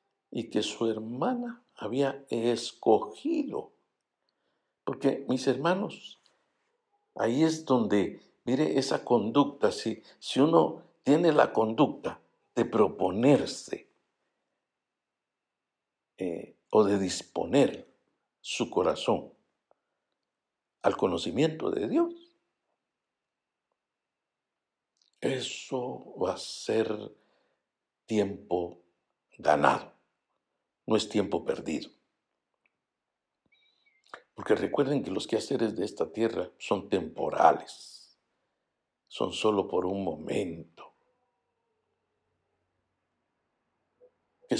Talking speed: 80 wpm